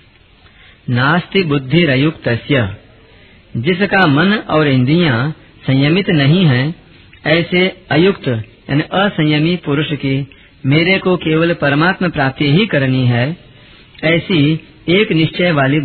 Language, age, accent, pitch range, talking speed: Hindi, 40-59, native, 130-170 Hz, 100 wpm